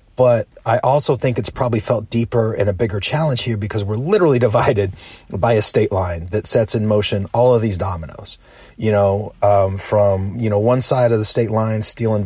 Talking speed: 205 wpm